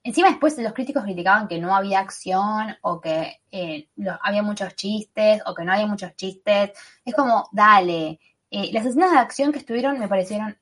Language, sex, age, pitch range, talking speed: Spanish, female, 10-29, 190-265 Hz, 190 wpm